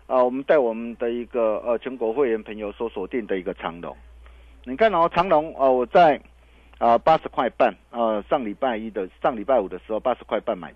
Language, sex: Chinese, male